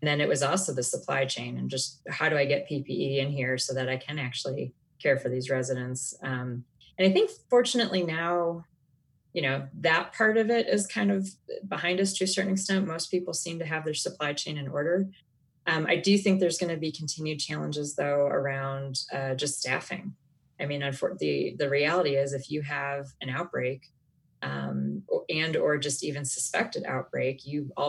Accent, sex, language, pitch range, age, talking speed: American, female, English, 135-160 Hz, 30-49, 195 wpm